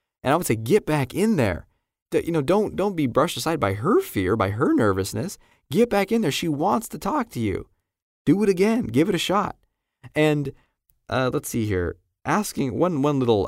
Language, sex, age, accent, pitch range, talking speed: English, male, 20-39, American, 100-150 Hz, 210 wpm